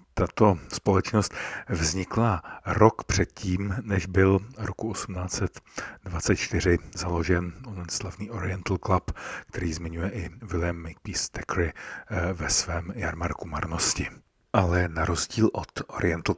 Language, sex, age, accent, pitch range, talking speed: Czech, male, 50-69, native, 80-95 Hz, 105 wpm